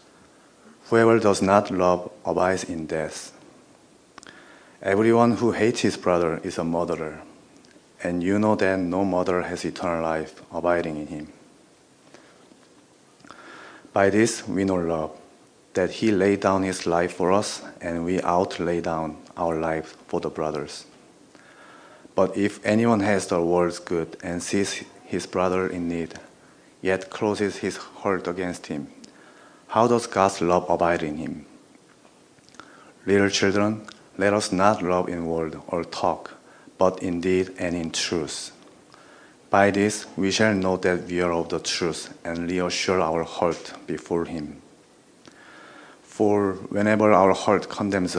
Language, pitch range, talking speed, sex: English, 85-100 Hz, 140 wpm, male